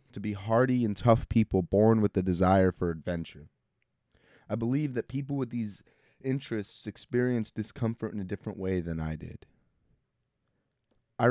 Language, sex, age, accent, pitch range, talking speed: English, male, 30-49, American, 100-120 Hz, 155 wpm